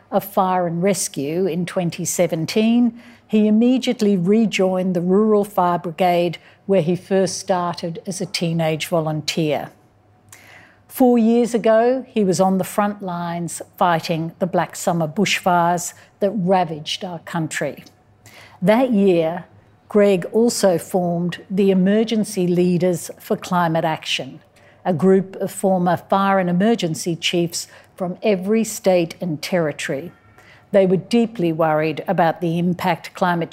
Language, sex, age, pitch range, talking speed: English, female, 60-79, 165-200 Hz, 125 wpm